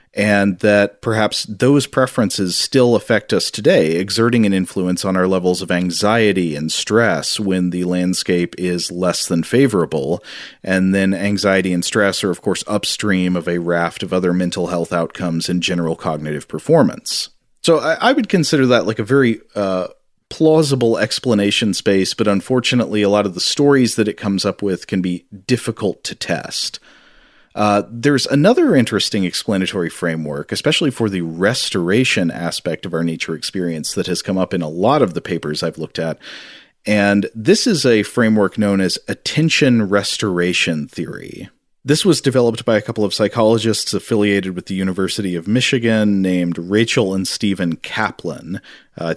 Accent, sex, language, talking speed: American, male, English, 165 wpm